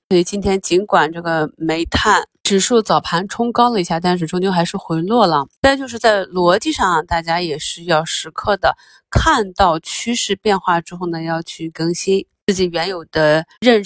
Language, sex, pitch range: Chinese, female, 165-205 Hz